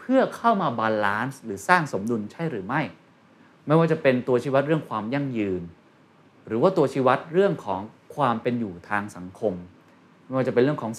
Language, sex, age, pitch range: Thai, male, 20-39, 110-165 Hz